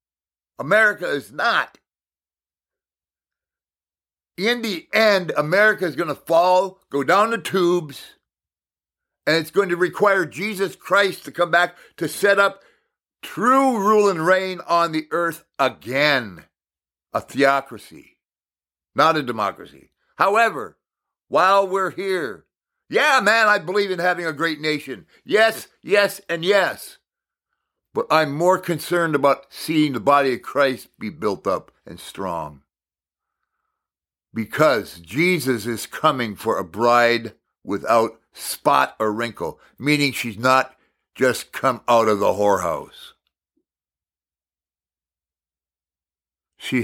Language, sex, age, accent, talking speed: English, male, 50-69, American, 120 wpm